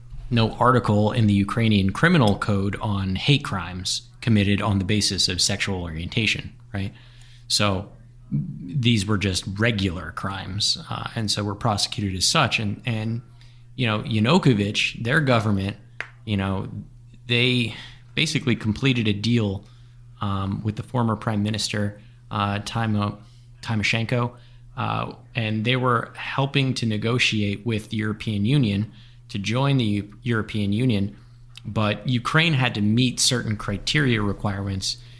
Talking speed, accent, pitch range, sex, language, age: 130 wpm, American, 105-120 Hz, male, English, 20-39